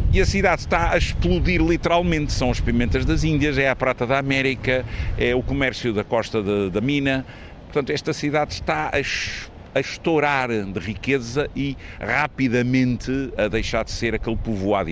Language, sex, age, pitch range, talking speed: Portuguese, male, 50-69, 95-135 Hz, 160 wpm